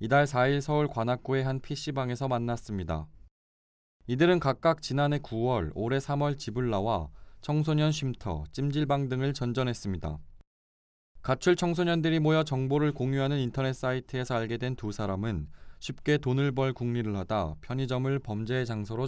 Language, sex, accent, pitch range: Korean, male, native, 100-140 Hz